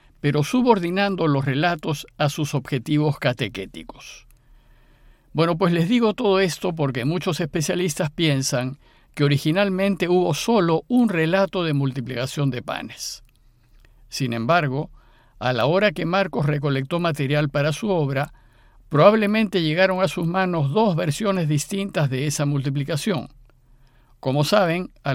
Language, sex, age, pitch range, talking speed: Spanish, male, 50-69, 135-180 Hz, 130 wpm